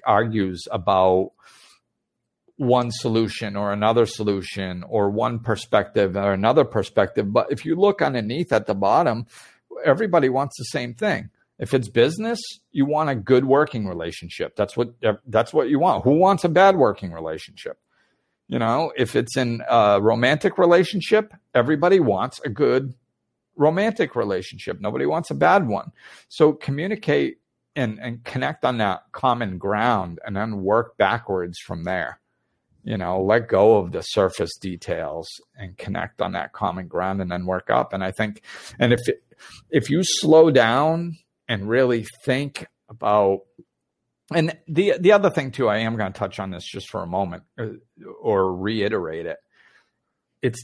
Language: English